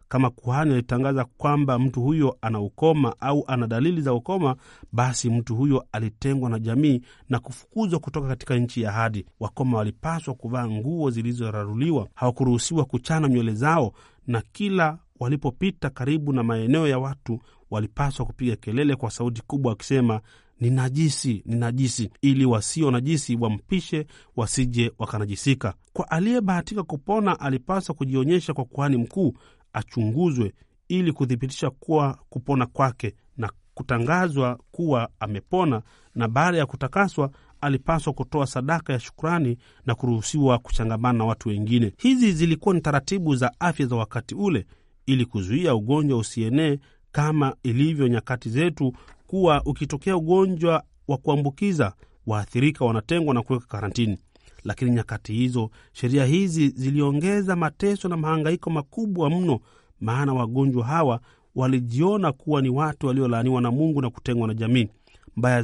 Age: 40-59